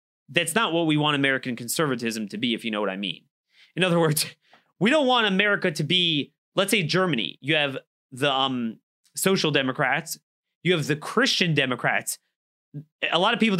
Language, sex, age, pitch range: English, male, 30-49, 145-185 Hz